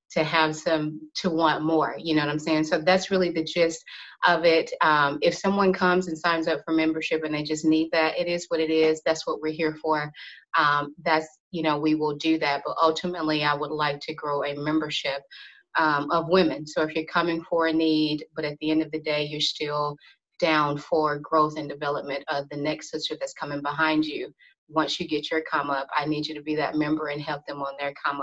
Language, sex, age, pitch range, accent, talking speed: English, female, 30-49, 150-160 Hz, American, 235 wpm